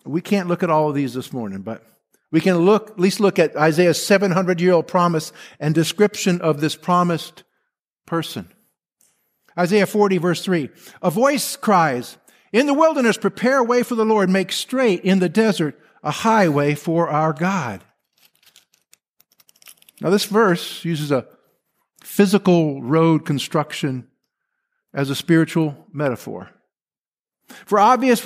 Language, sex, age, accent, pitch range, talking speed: English, male, 50-69, American, 165-220 Hz, 145 wpm